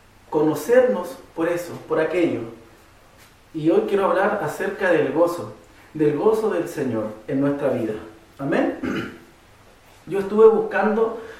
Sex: male